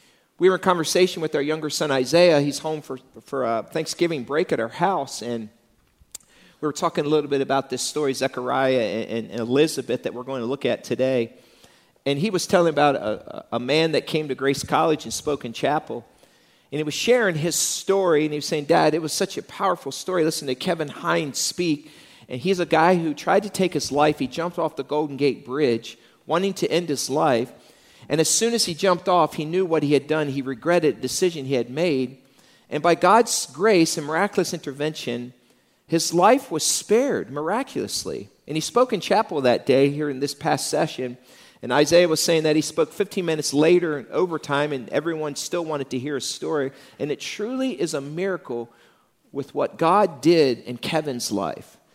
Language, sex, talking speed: English, male, 205 wpm